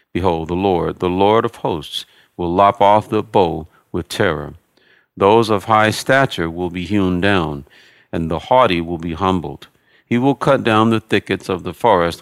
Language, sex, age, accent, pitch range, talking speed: English, male, 50-69, American, 85-110 Hz, 180 wpm